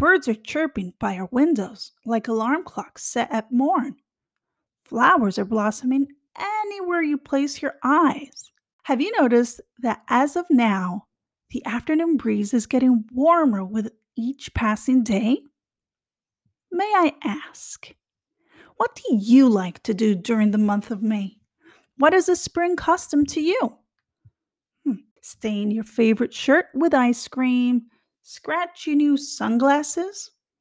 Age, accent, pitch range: 30-49, American, 220-300 Hz